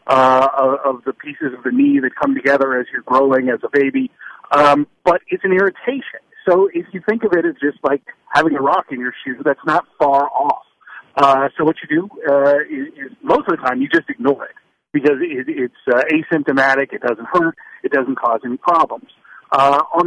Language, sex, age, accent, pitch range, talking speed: English, male, 50-69, American, 135-180 Hz, 215 wpm